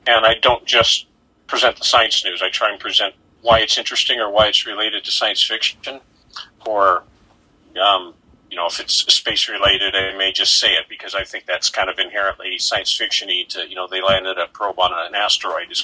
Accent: American